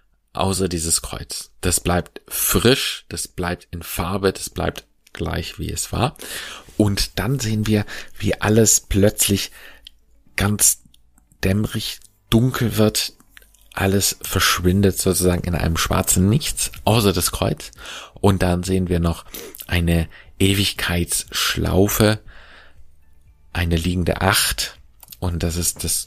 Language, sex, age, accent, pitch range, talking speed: German, male, 40-59, German, 85-100 Hz, 115 wpm